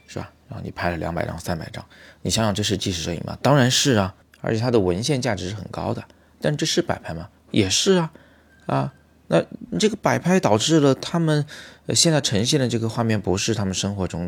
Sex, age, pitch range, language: male, 20-39, 90-110 Hz, Chinese